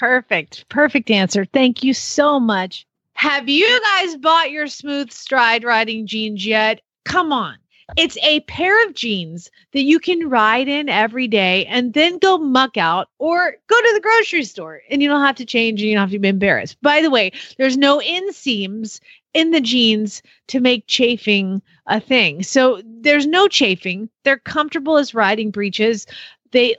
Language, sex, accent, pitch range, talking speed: English, female, American, 205-285 Hz, 175 wpm